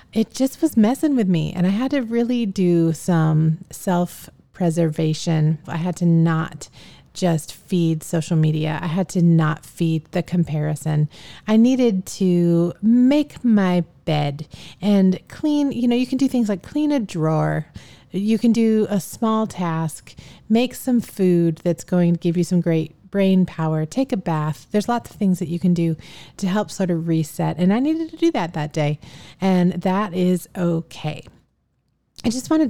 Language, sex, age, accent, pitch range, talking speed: English, female, 30-49, American, 160-210 Hz, 175 wpm